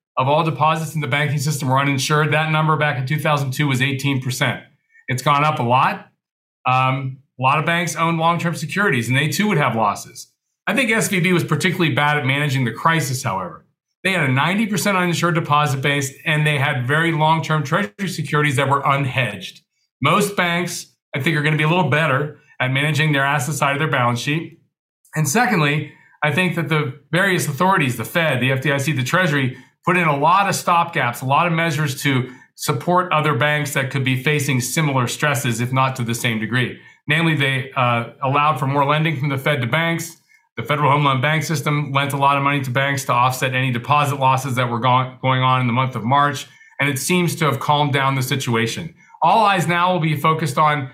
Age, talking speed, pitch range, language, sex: 40-59, 210 wpm, 130-160 Hz, English, male